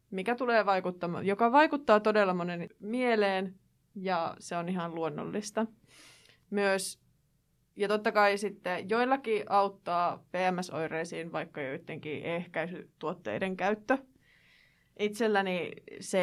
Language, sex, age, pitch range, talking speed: Finnish, female, 20-39, 185-230 Hz, 100 wpm